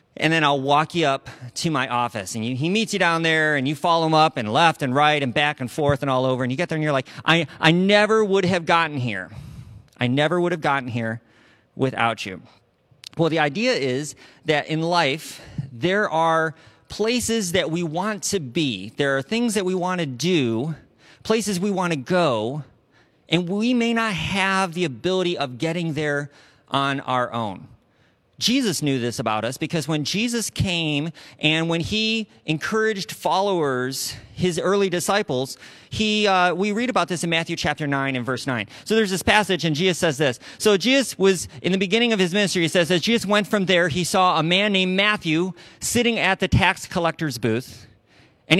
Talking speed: 195 wpm